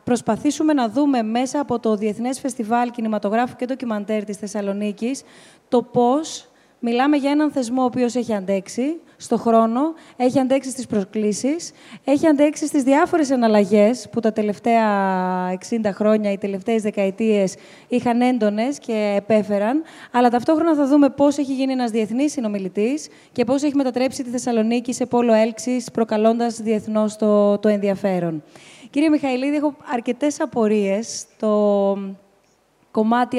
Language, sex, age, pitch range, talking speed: Greek, female, 20-39, 215-260 Hz, 140 wpm